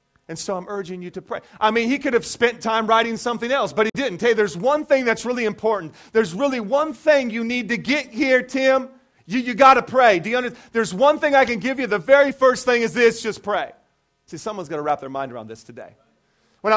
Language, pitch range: English, 190-245 Hz